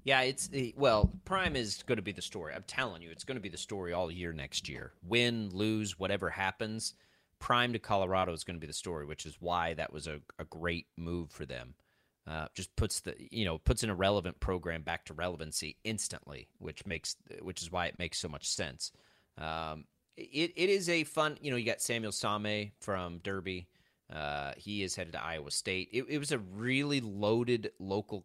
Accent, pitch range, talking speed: American, 85-110 Hz, 210 wpm